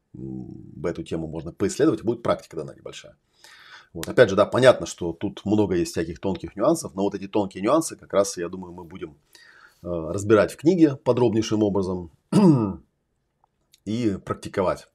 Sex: male